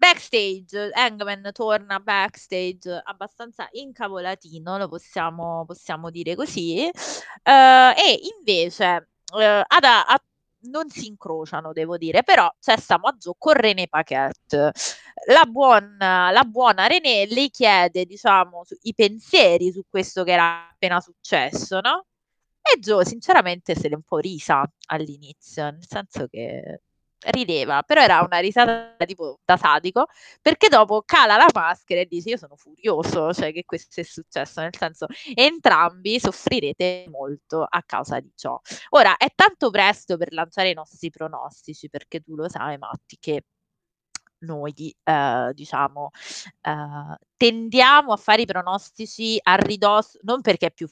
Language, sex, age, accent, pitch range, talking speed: Italian, female, 20-39, native, 165-230 Hz, 145 wpm